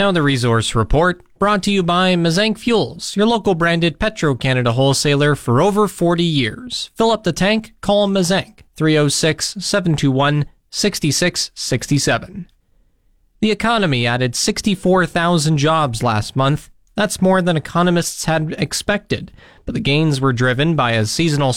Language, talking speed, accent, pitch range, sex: English, 130 wpm, American, 130-170 Hz, male